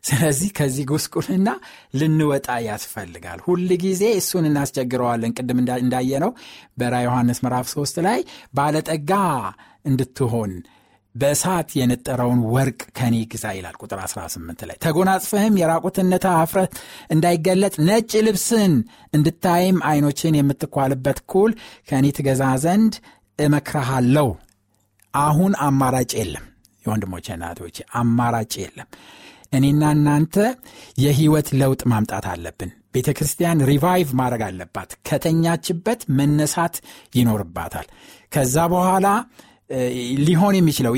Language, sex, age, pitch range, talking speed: Amharic, male, 60-79, 125-180 Hz, 90 wpm